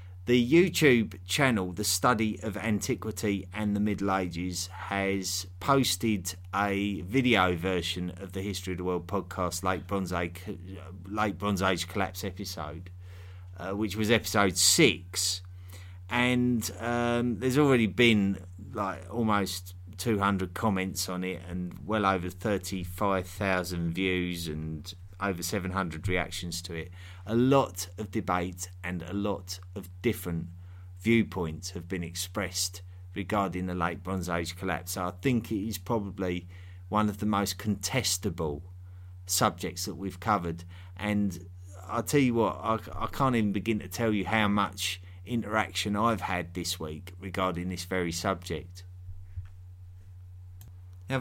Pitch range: 90-105 Hz